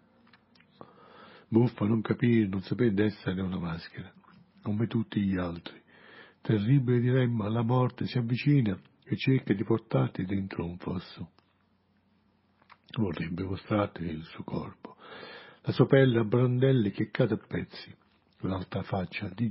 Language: Italian